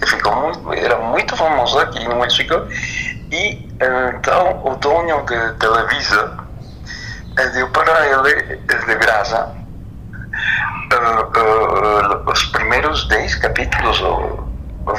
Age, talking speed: 60-79, 105 wpm